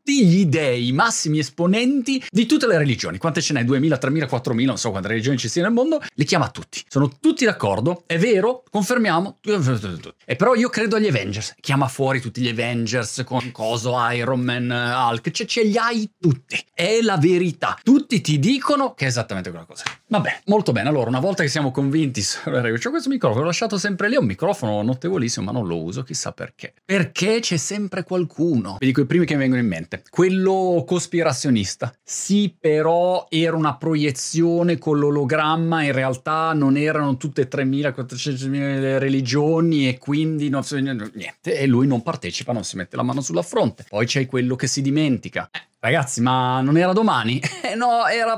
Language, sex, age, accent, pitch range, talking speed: Italian, male, 30-49, native, 130-185 Hz, 190 wpm